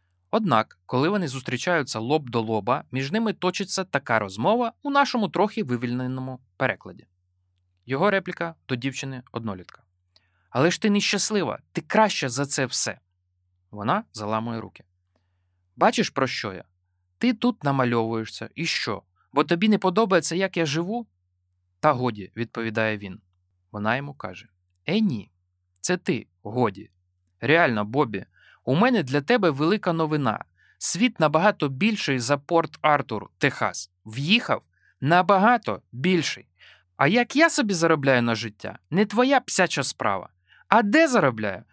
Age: 20-39